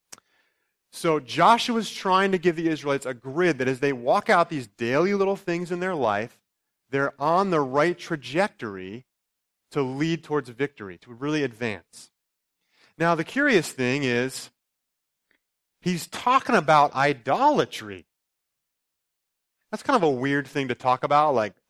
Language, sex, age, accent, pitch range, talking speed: English, male, 30-49, American, 115-175 Hz, 145 wpm